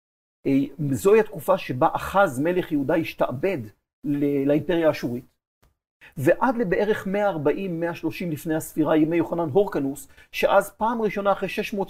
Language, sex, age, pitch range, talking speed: Hebrew, male, 40-59, 155-200 Hz, 135 wpm